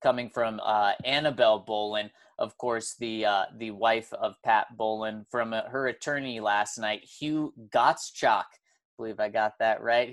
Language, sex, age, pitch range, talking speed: English, male, 20-39, 110-155 Hz, 165 wpm